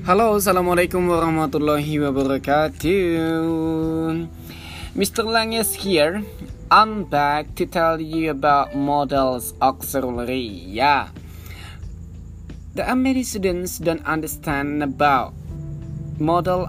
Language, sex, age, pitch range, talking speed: Indonesian, male, 20-39, 125-165 Hz, 85 wpm